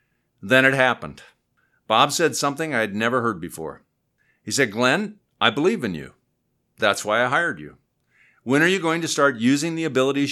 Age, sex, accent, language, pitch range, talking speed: 50-69, male, American, English, 115-155 Hz, 185 wpm